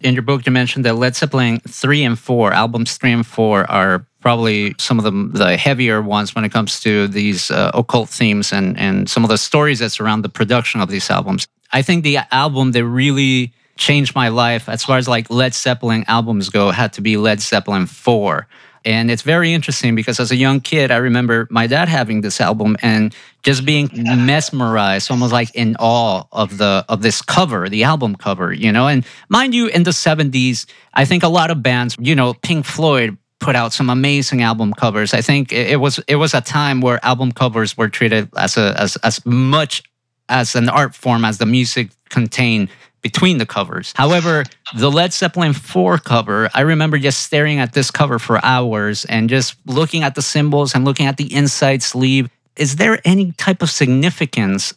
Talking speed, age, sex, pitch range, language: 205 wpm, 40-59, male, 110-140 Hz, English